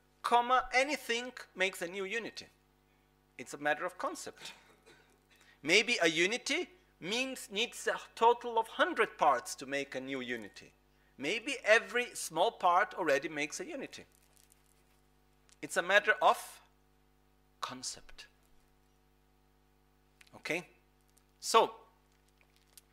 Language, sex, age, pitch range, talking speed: Italian, male, 40-59, 150-235 Hz, 105 wpm